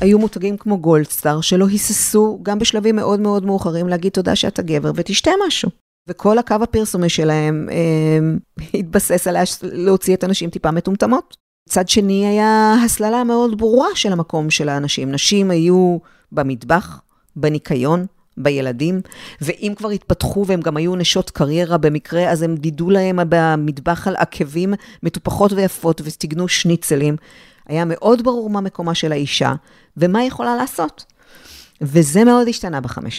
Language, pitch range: Hebrew, 155-210 Hz